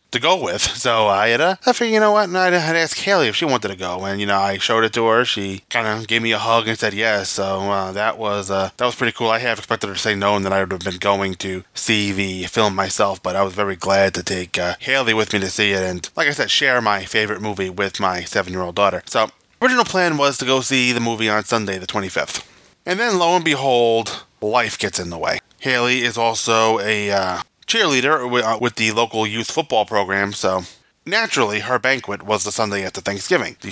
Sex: male